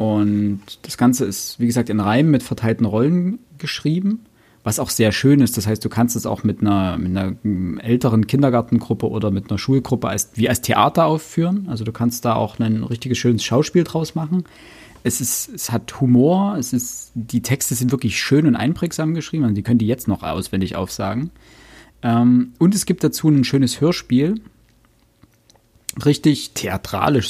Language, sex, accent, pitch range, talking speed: German, male, German, 105-135 Hz, 180 wpm